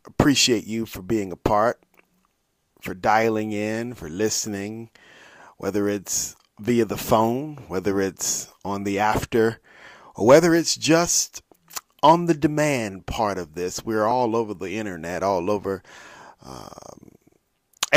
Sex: male